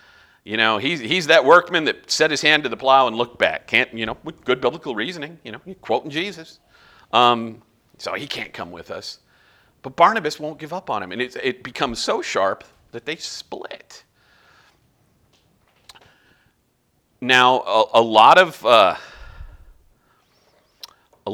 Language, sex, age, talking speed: English, male, 40-59, 160 wpm